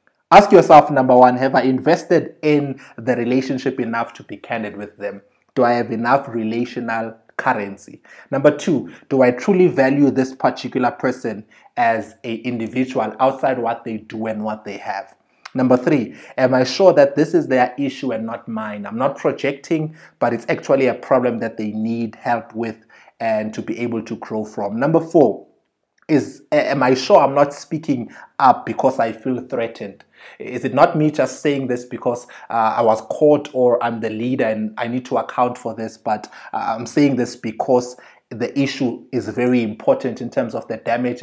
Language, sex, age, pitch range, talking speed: English, male, 30-49, 110-135 Hz, 185 wpm